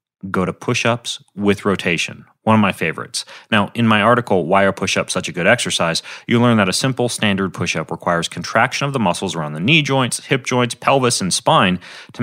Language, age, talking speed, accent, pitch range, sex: English, 30-49, 205 wpm, American, 95-120 Hz, male